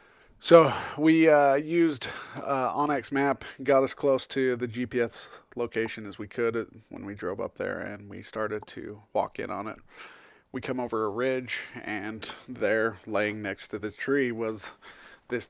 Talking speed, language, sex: 165 wpm, English, male